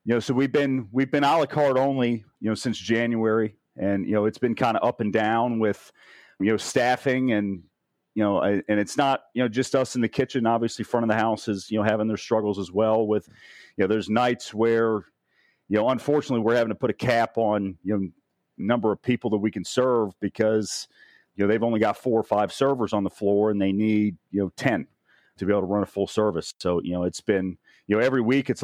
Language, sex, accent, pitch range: English, male, American, 100-120 Hz